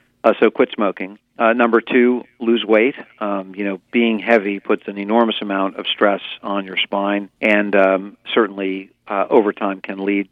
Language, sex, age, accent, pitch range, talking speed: English, male, 50-69, American, 100-115 Hz, 175 wpm